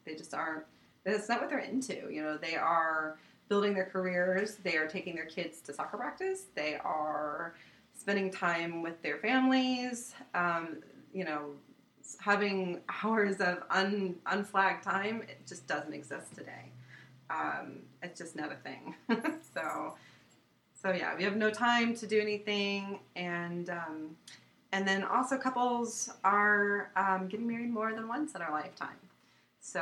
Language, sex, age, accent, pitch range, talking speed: English, female, 30-49, American, 160-210 Hz, 155 wpm